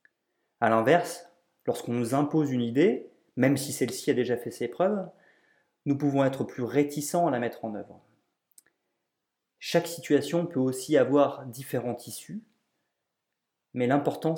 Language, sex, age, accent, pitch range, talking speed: French, male, 30-49, French, 120-155 Hz, 140 wpm